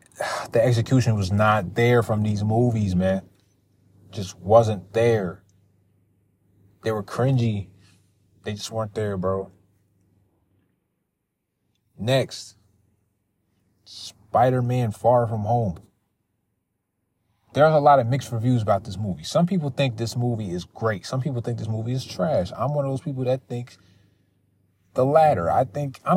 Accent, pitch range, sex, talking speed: American, 100-130 Hz, male, 140 wpm